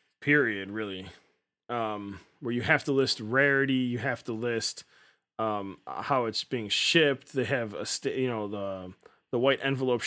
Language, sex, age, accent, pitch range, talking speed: English, male, 20-39, American, 120-150 Hz, 165 wpm